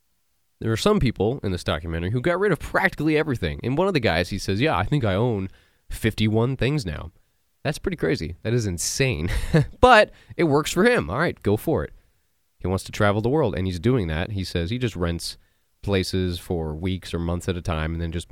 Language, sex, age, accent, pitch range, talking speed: English, male, 20-39, American, 85-110 Hz, 230 wpm